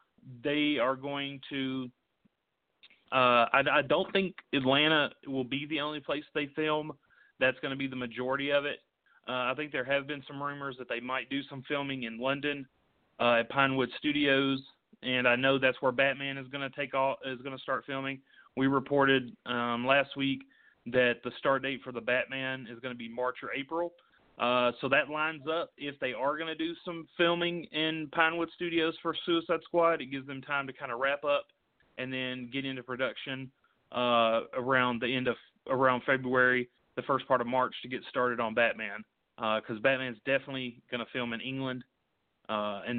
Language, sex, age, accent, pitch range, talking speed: English, male, 40-59, American, 125-145 Hz, 195 wpm